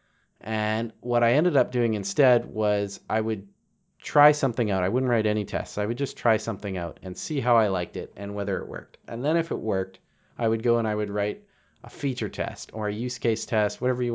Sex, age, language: male, 30-49, English